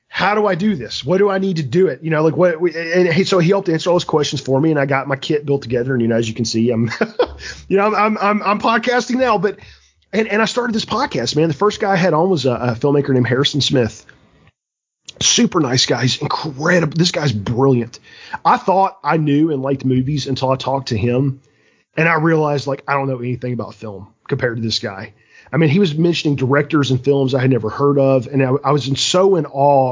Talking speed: 250 wpm